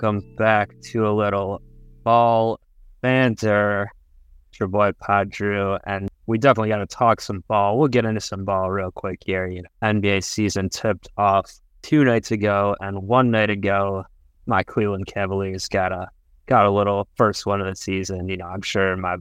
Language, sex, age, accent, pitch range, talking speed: English, male, 20-39, American, 95-110 Hz, 180 wpm